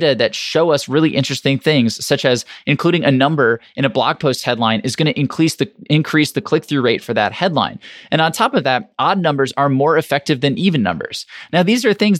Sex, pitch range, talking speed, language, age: male, 120-160 Hz, 210 wpm, English, 20-39